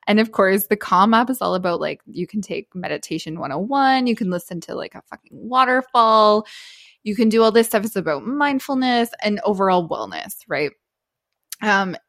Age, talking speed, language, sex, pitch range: 20-39, 185 wpm, English, female, 180-225 Hz